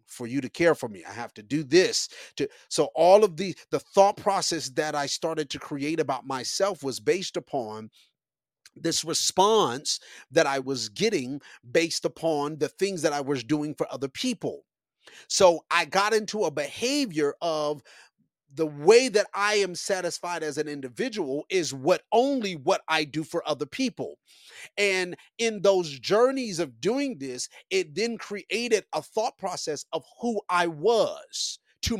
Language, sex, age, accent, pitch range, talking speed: English, male, 30-49, American, 150-205 Hz, 165 wpm